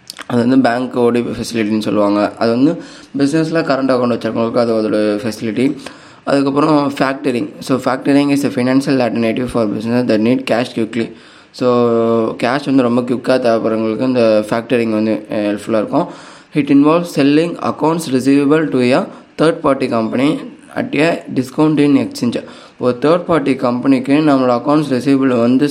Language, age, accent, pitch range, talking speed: Tamil, 20-39, native, 115-135 Hz, 145 wpm